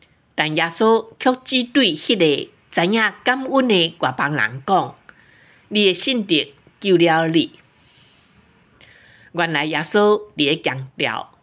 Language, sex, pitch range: Chinese, female, 155-230 Hz